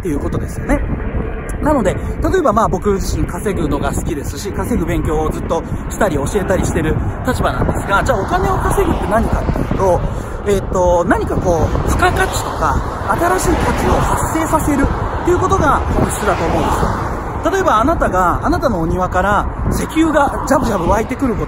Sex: male